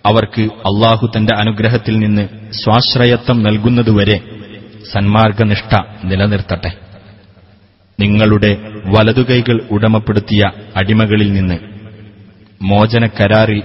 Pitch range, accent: 100-115 Hz, native